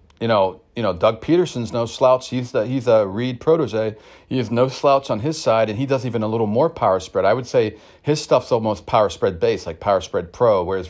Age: 40-59